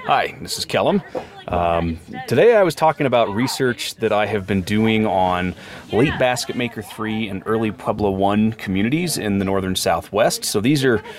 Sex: male